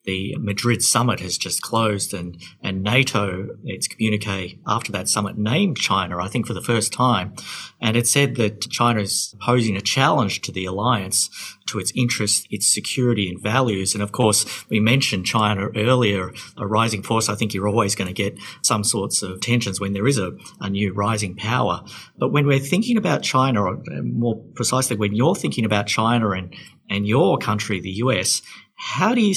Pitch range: 100-125 Hz